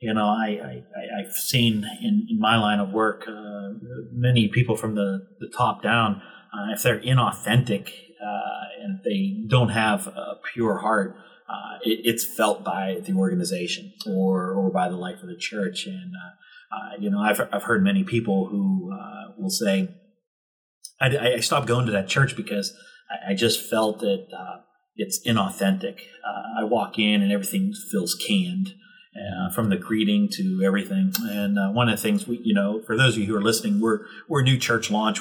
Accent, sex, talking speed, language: American, male, 185 wpm, English